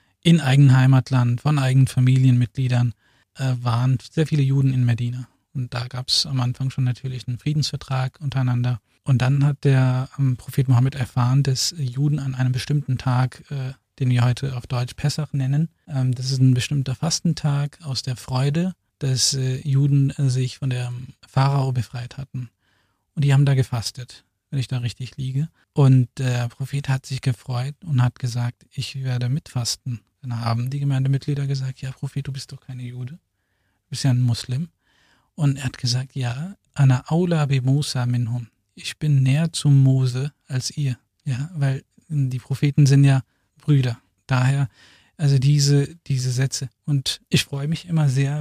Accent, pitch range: German, 125-140 Hz